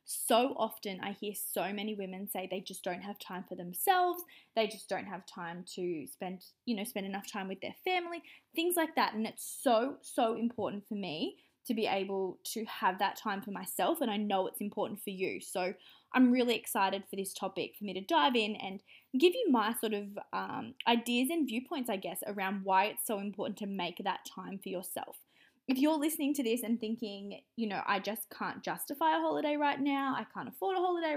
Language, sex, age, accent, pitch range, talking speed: English, female, 20-39, Australian, 195-265 Hz, 220 wpm